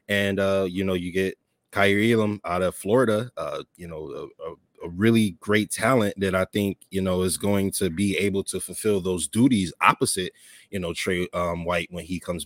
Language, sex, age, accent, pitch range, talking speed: English, male, 20-39, American, 95-125 Hz, 200 wpm